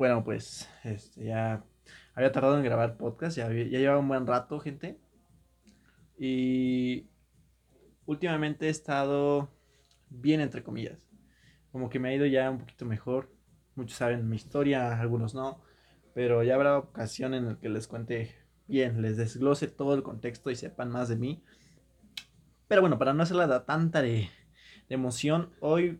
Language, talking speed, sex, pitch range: Spanish, 155 wpm, male, 120-155 Hz